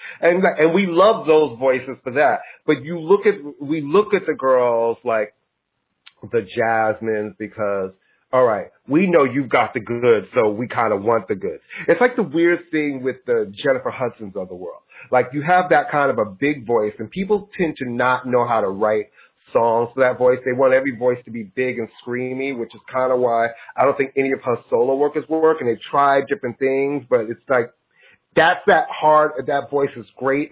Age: 30-49